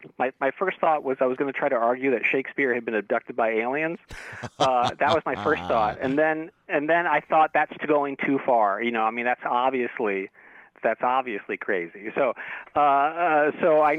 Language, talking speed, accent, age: English, 210 wpm, American, 40-59